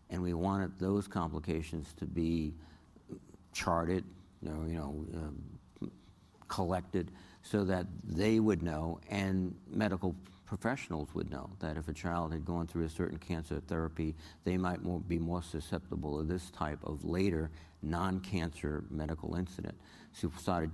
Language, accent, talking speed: English, American, 145 wpm